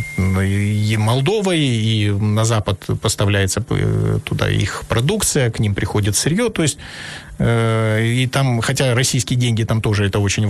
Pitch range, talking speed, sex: 115-155 Hz, 145 wpm, male